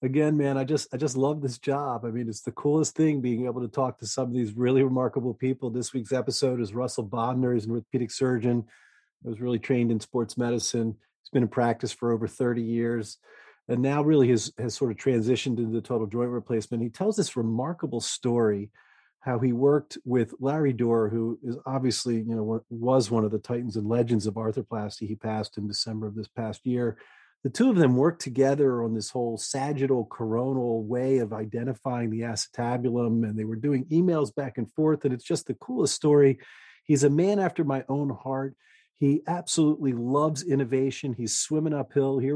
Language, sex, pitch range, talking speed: English, male, 115-135 Hz, 200 wpm